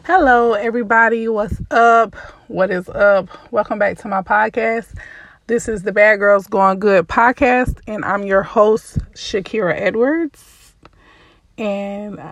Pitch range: 185-225 Hz